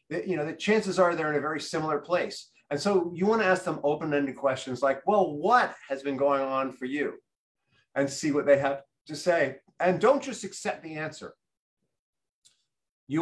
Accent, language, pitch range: American, English, 140-185 Hz